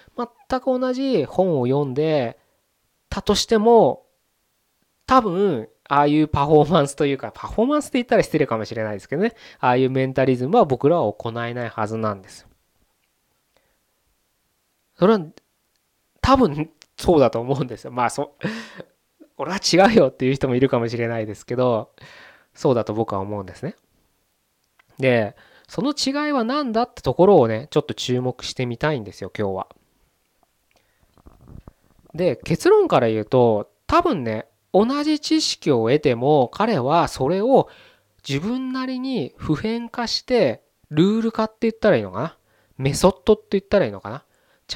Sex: male